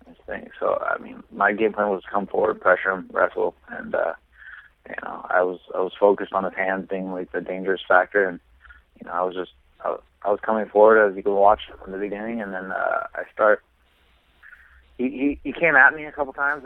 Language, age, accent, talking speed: English, 20-39, American, 225 wpm